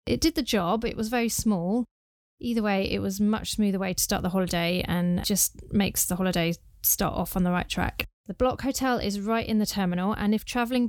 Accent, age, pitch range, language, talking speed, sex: British, 30-49, 185-220 Hz, English, 225 wpm, female